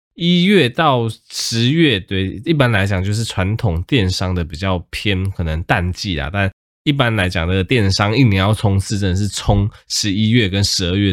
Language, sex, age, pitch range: Chinese, male, 20-39, 95-130 Hz